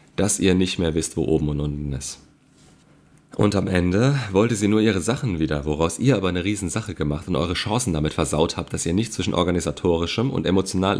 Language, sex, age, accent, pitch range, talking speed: German, male, 40-59, German, 80-100 Hz, 205 wpm